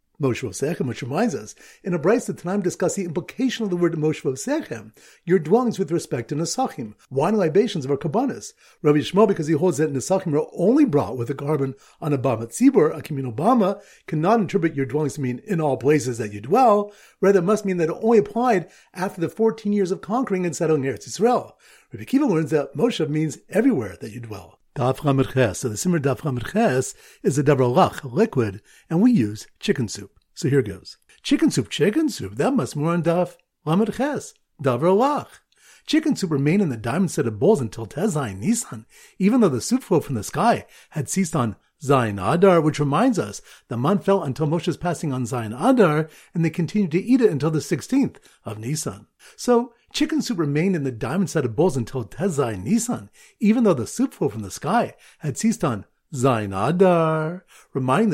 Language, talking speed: English, 200 wpm